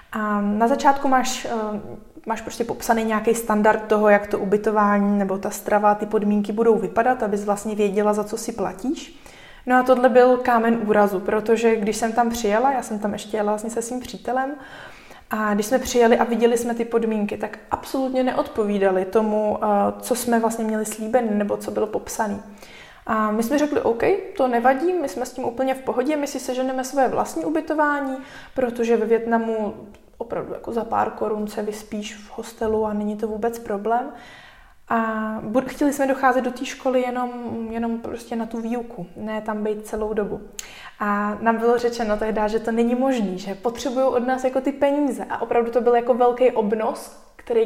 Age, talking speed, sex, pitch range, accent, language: 20-39, 190 wpm, female, 215-255 Hz, native, Czech